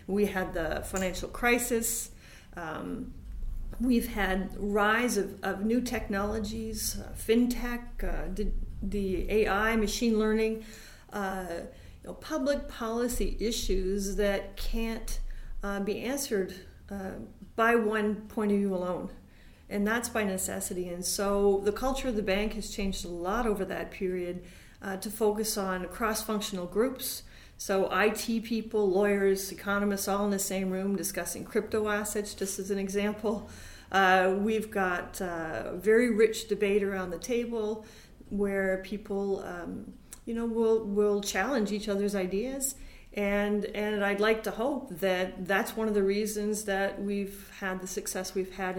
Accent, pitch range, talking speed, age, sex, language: American, 190-220 Hz, 145 wpm, 40-59, female, English